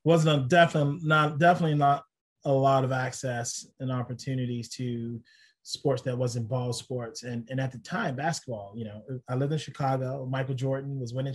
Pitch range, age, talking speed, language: 125-145 Hz, 30-49, 175 wpm, English